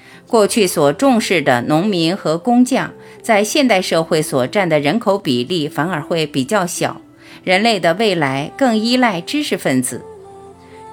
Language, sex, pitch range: Chinese, female, 145-235 Hz